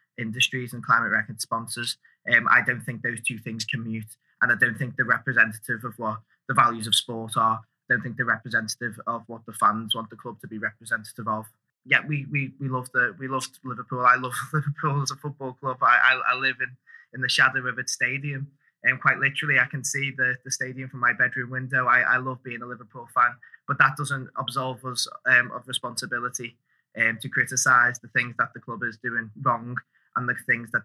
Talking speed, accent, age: 220 wpm, British, 20-39